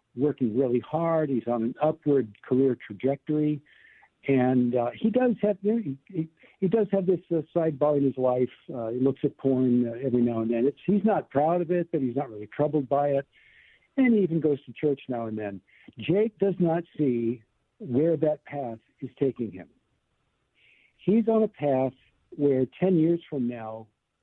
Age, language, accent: 60-79, English, American